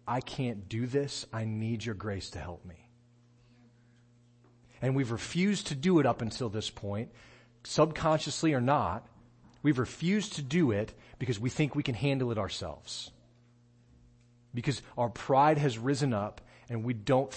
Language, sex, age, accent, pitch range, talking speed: English, male, 40-59, American, 115-135 Hz, 160 wpm